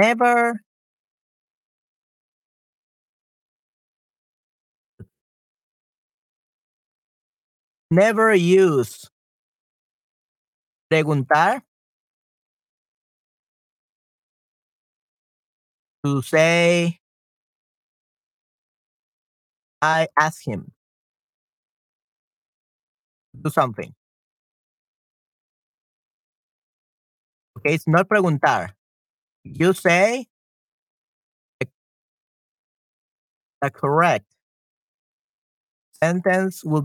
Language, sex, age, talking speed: Spanish, male, 40-59, 35 wpm